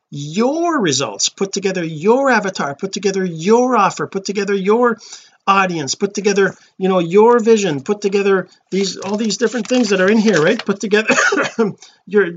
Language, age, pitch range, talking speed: English, 40-59, 155-210 Hz, 170 wpm